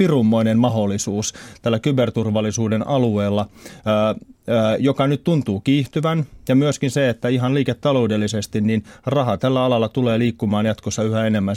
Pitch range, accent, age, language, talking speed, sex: 105-130 Hz, native, 30-49, Finnish, 130 wpm, male